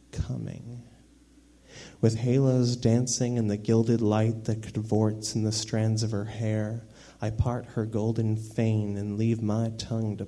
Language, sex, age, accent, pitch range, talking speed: English, male, 30-49, American, 105-120 Hz, 150 wpm